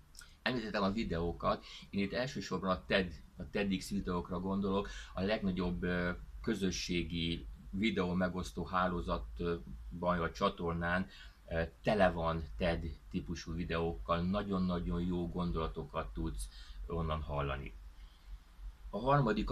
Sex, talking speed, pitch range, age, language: male, 95 wpm, 75-95 Hz, 30-49, Hungarian